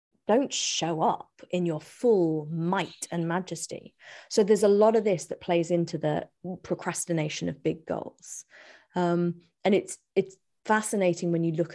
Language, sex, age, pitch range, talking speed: English, female, 30-49, 160-195 Hz, 160 wpm